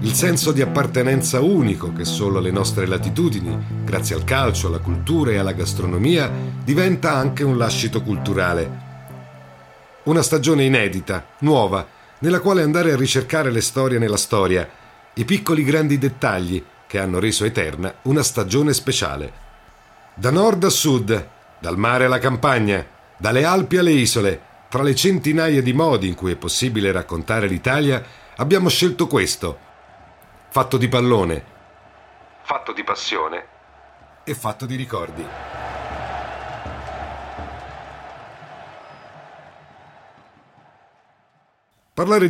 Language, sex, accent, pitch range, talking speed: Italian, male, native, 95-150 Hz, 120 wpm